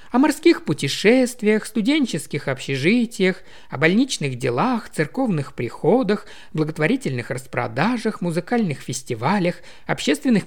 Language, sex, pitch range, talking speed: Russian, male, 135-215 Hz, 85 wpm